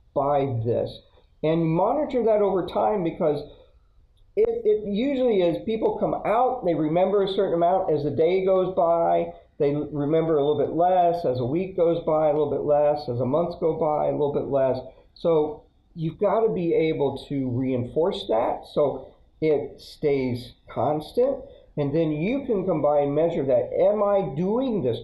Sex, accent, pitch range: male, American, 140-190 Hz